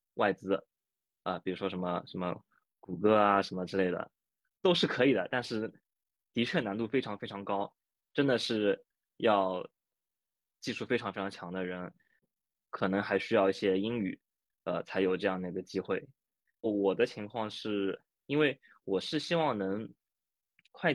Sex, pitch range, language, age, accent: male, 95-120 Hz, Chinese, 20-39, native